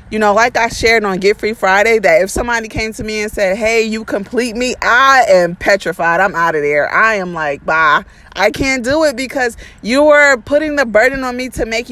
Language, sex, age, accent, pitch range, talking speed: English, female, 20-39, American, 200-245 Hz, 230 wpm